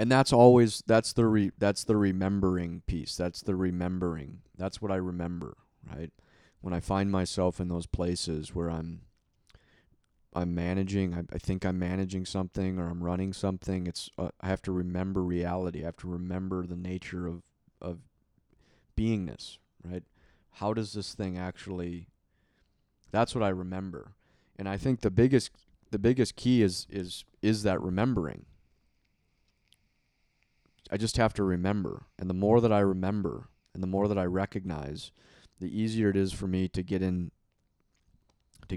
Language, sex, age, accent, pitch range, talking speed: English, male, 30-49, American, 90-100 Hz, 165 wpm